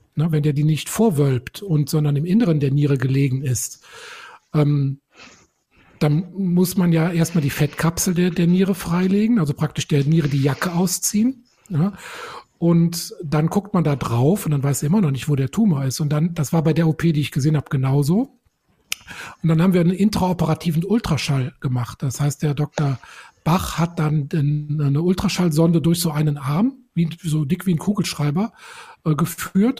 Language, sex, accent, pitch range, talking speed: German, male, German, 150-185 Hz, 175 wpm